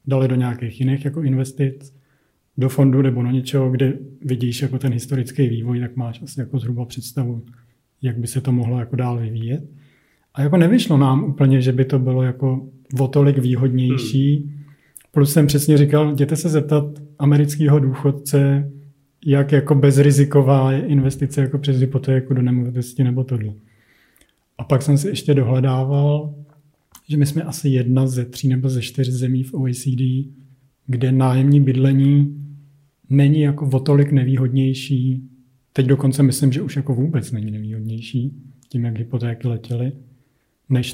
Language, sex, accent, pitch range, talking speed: Czech, male, native, 125-140 Hz, 160 wpm